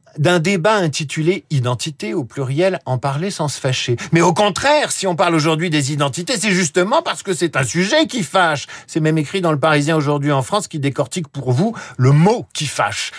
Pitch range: 125-175 Hz